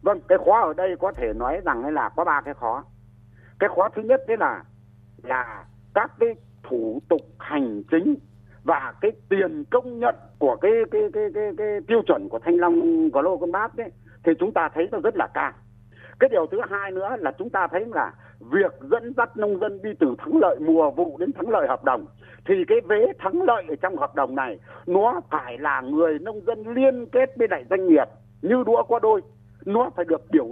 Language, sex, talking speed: Vietnamese, male, 220 wpm